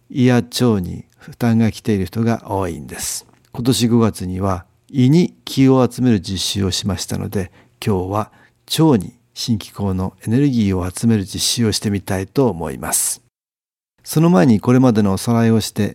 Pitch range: 95-120 Hz